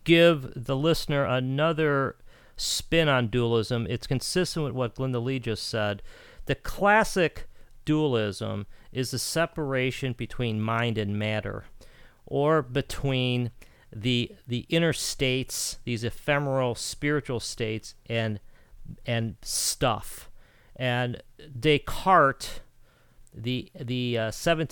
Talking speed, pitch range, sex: 105 wpm, 115-140 Hz, male